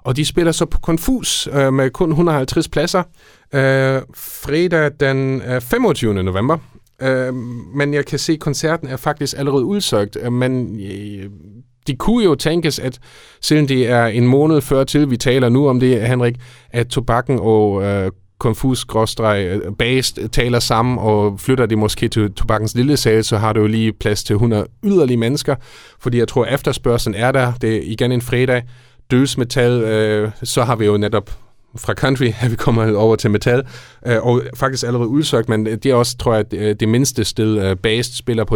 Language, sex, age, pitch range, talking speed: Danish, male, 40-59, 110-135 Hz, 185 wpm